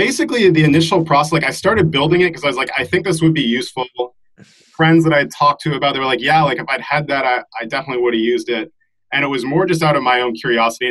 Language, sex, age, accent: English, male, 30-49, American